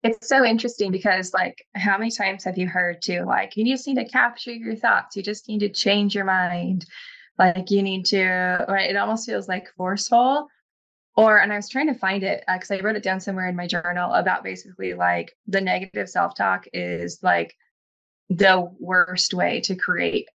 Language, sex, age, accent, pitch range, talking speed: English, female, 20-39, American, 180-210 Hz, 200 wpm